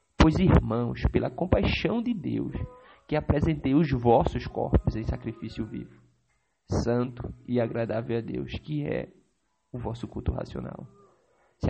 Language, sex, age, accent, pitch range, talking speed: English, male, 20-39, Brazilian, 120-145 Hz, 135 wpm